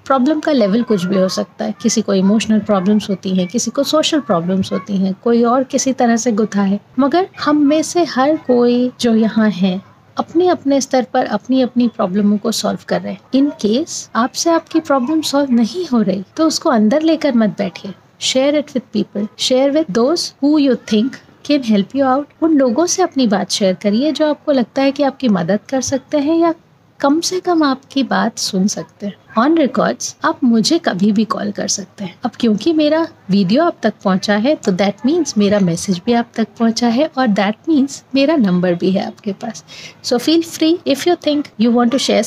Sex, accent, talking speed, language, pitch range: female, native, 170 wpm, Hindi, 210-295 Hz